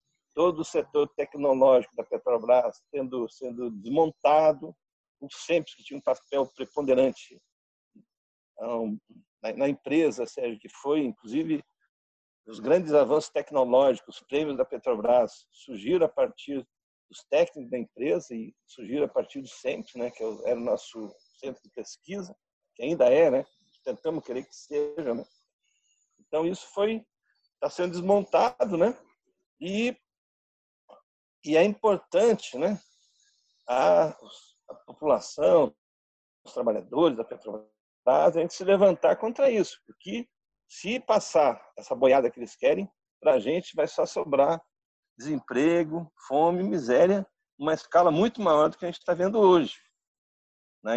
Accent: Brazilian